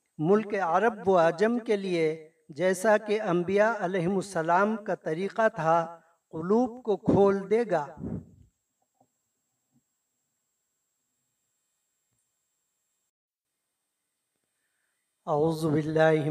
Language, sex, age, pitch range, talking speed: Urdu, male, 50-69, 160-180 Hz, 75 wpm